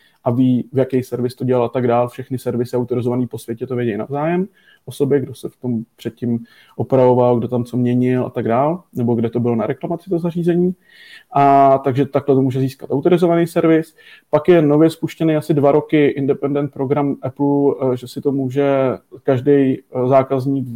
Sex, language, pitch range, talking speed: male, Czech, 125-140 Hz, 185 wpm